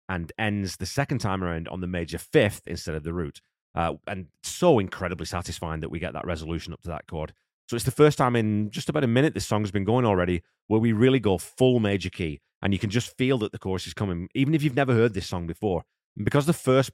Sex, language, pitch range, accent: male, English, 85-115 Hz, British